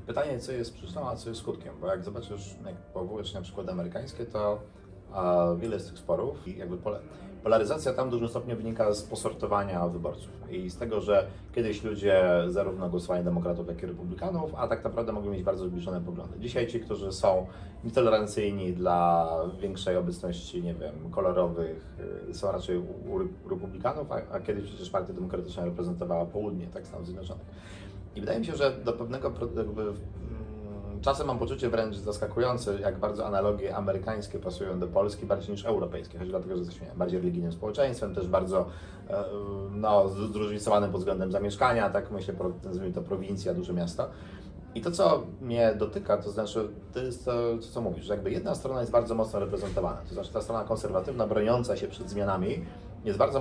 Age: 30-49